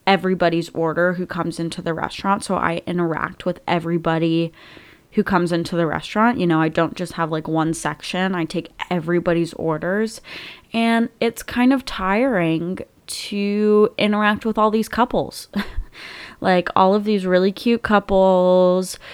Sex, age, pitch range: female, 20-39, 170-195 Hz